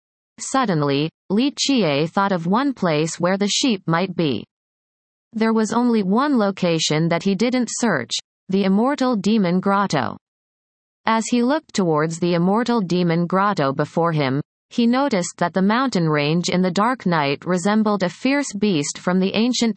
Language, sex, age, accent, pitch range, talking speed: English, female, 30-49, American, 170-225 Hz, 160 wpm